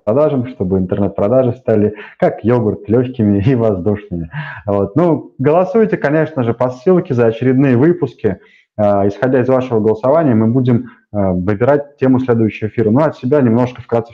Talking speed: 135 wpm